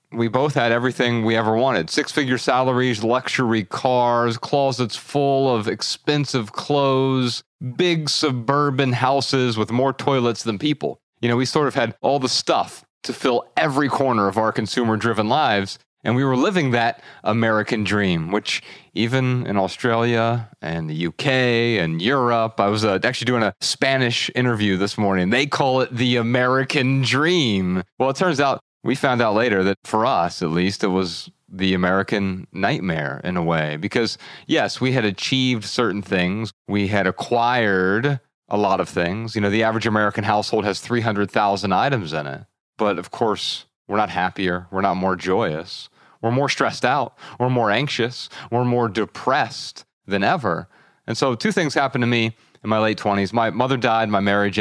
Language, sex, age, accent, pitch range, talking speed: English, male, 30-49, American, 100-130 Hz, 170 wpm